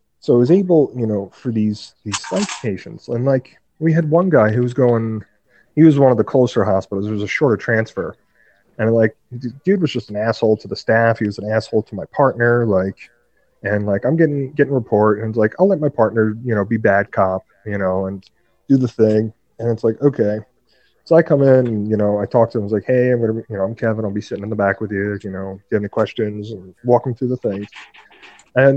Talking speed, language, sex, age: 250 wpm, English, male, 30-49